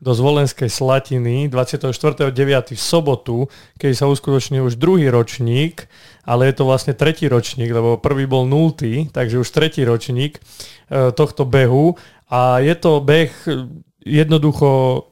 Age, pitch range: 30-49, 125-145 Hz